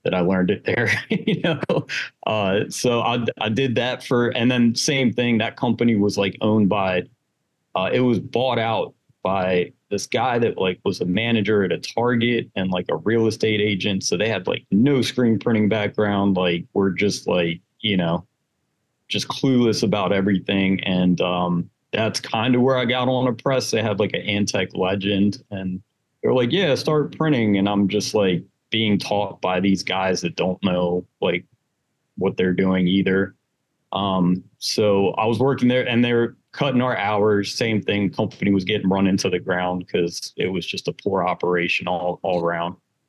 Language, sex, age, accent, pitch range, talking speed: English, male, 30-49, American, 95-115 Hz, 190 wpm